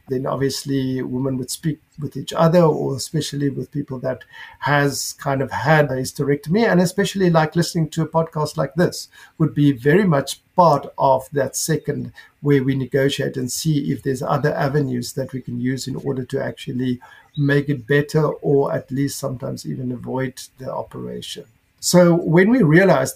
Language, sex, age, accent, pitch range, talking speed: English, male, 50-69, South African, 135-155 Hz, 175 wpm